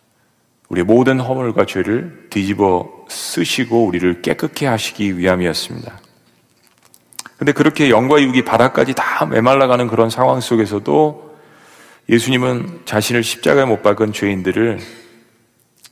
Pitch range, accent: 100-125 Hz, native